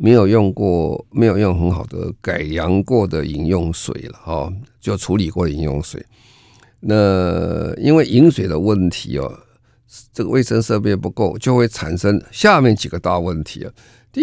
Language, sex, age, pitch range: Chinese, male, 50-69, 85-115 Hz